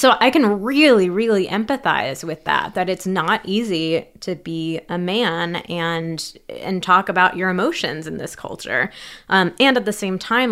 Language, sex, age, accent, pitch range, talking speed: English, female, 20-39, American, 165-215 Hz, 175 wpm